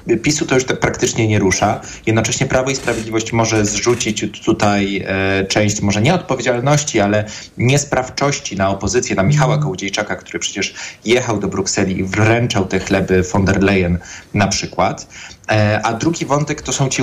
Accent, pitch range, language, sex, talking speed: native, 100-130 Hz, Polish, male, 160 wpm